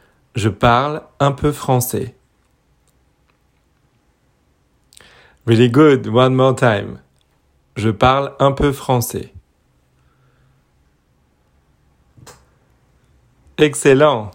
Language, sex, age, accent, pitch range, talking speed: French, male, 40-59, French, 110-135 Hz, 65 wpm